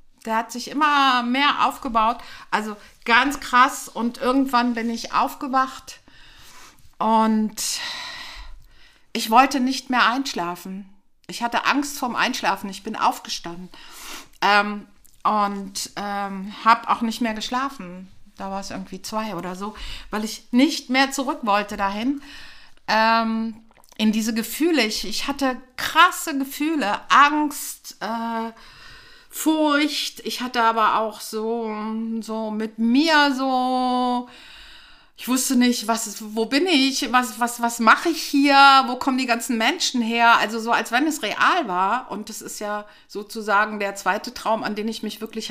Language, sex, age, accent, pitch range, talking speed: German, female, 50-69, German, 220-270 Hz, 145 wpm